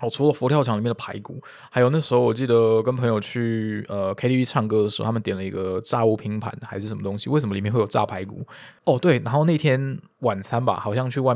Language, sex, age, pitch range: Chinese, male, 20-39, 110-135 Hz